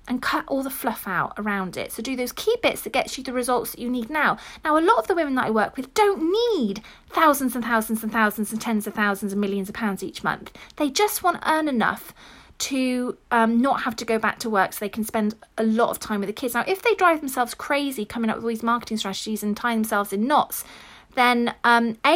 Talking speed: 260 wpm